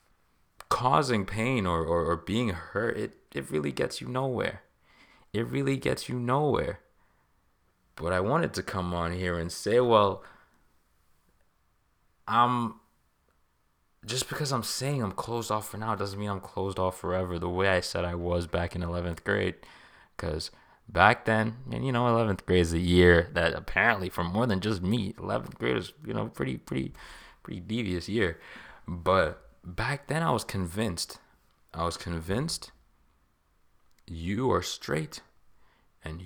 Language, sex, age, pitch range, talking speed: English, male, 20-39, 85-115 Hz, 155 wpm